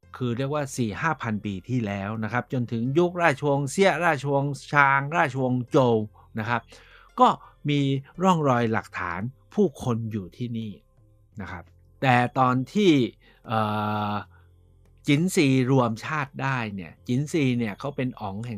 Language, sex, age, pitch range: Thai, male, 60-79, 105-140 Hz